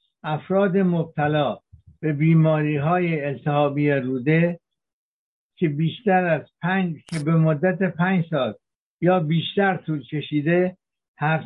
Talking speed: 105 wpm